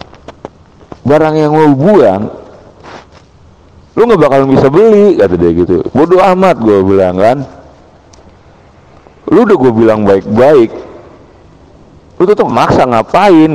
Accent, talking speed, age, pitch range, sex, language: native, 120 wpm, 50-69, 90-140 Hz, male, Indonesian